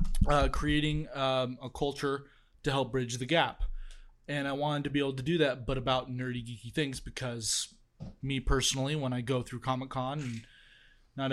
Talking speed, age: 180 wpm, 20-39